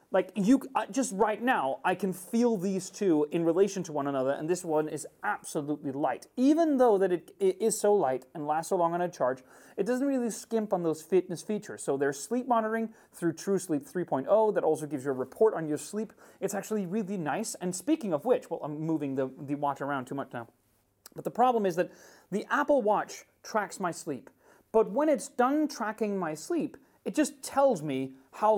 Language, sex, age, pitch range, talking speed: Italian, male, 30-49, 155-225 Hz, 215 wpm